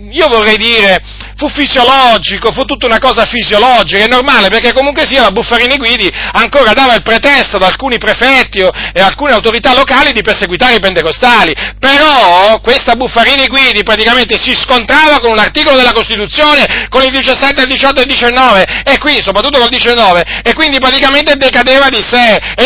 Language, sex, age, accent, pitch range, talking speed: Italian, male, 40-59, native, 210-265 Hz, 175 wpm